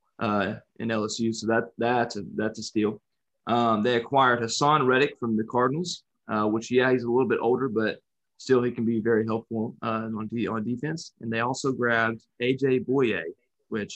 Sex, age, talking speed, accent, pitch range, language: male, 20-39, 195 wpm, American, 110-125 Hz, English